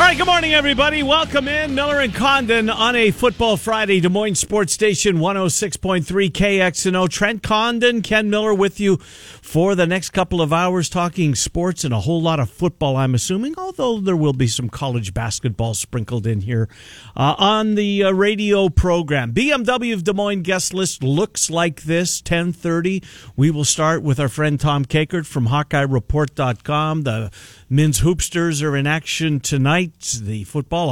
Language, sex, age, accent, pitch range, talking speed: English, male, 50-69, American, 135-195 Hz, 170 wpm